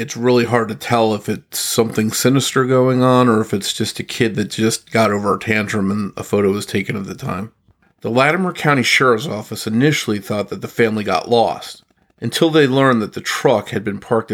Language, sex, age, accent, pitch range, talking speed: English, male, 40-59, American, 110-125 Hz, 220 wpm